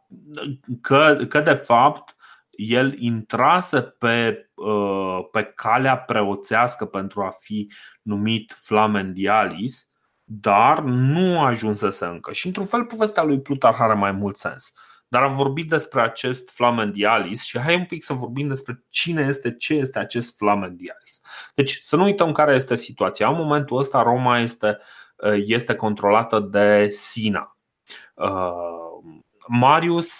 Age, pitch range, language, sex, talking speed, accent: 30-49, 105-135 Hz, Romanian, male, 130 wpm, native